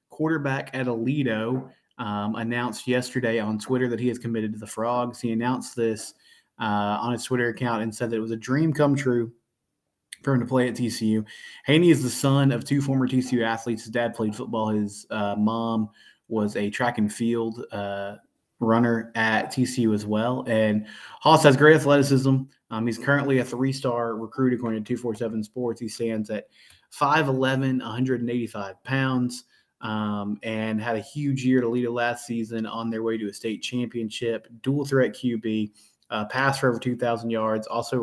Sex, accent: male, American